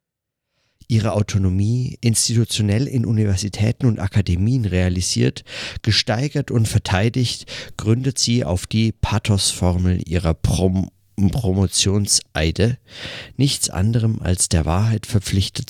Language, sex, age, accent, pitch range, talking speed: German, male, 50-69, German, 95-115 Hz, 90 wpm